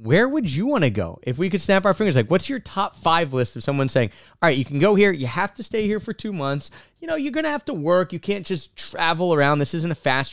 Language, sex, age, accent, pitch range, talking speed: English, male, 30-49, American, 115-160 Hz, 295 wpm